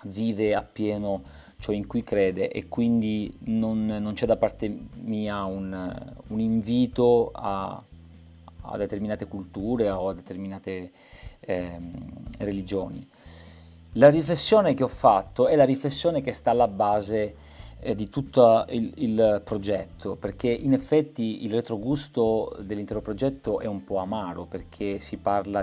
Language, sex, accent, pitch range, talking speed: Italian, male, native, 95-115 Hz, 135 wpm